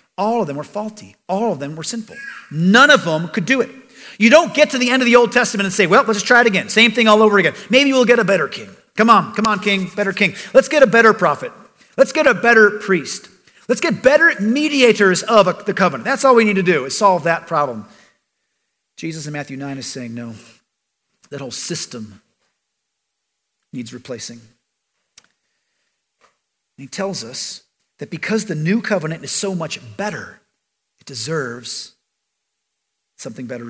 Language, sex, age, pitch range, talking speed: English, male, 40-59, 170-230 Hz, 190 wpm